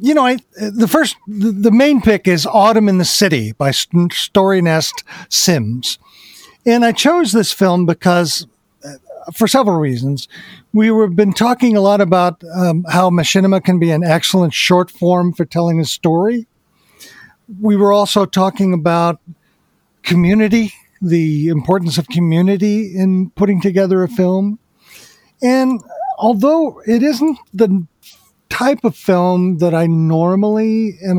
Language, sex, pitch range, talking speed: English, male, 170-220 Hz, 140 wpm